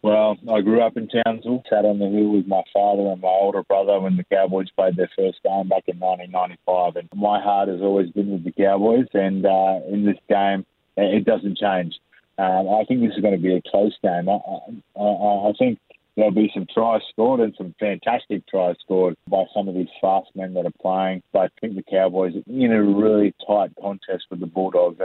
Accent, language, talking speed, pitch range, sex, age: Australian, English, 225 wpm, 90-105 Hz, male, 30-49